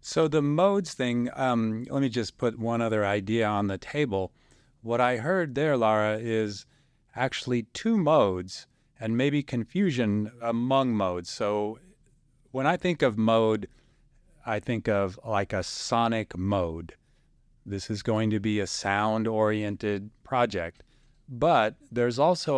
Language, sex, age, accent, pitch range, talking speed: English, male, 40-59, American, 105-130 Hz, 140 wpm